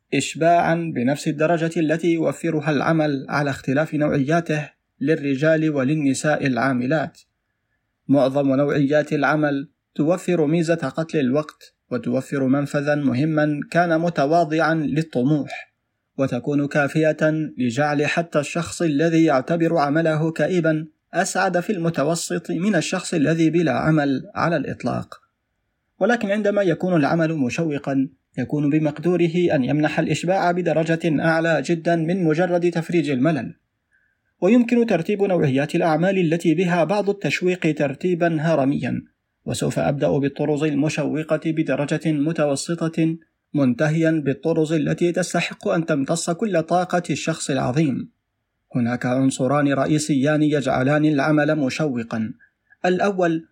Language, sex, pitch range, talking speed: Arabic, male, 145-170 Hz, 105 wpm